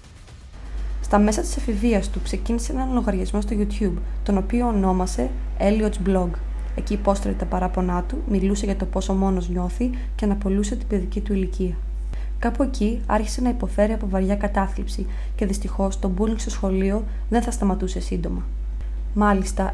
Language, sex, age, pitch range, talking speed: Greek, female, 20-39, 190-220 Hz, 155 wpm